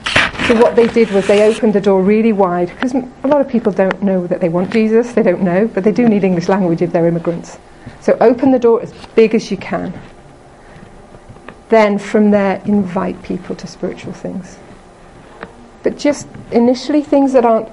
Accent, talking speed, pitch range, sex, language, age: British, 195 wpm, 190-225 Hz, female, English, 40-59